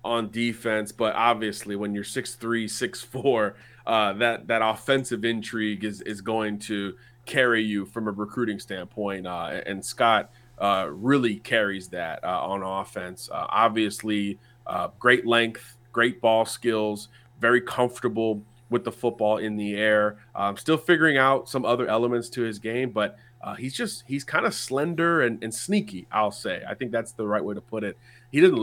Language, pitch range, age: English, 110-125 Hz, 30-49